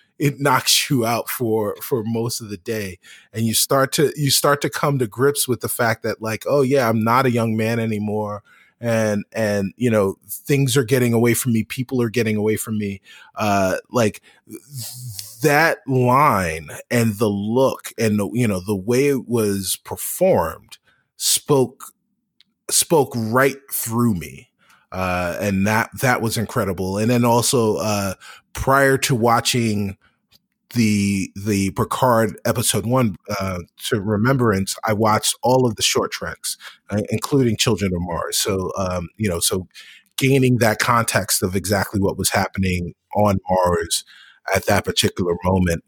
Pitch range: 100-125 Hz